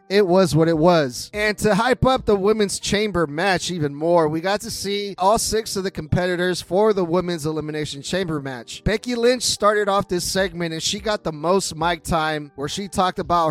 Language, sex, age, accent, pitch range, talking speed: English, male, 30-49, American, 160-205 Hz, 210 wpm